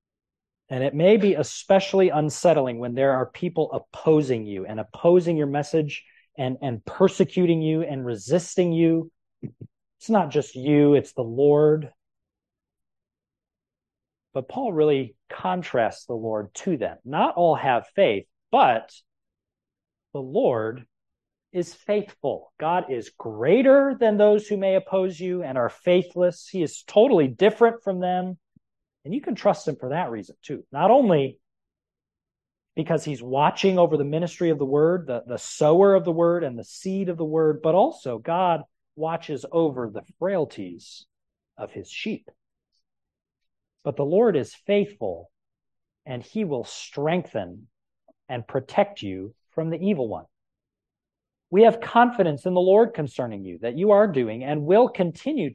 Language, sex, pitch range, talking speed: English, male, 130-185 Hz, 150 wpm